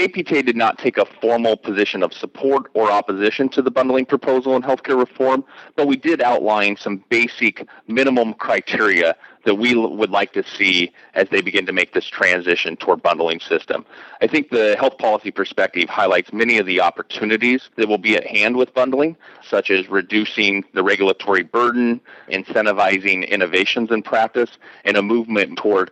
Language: English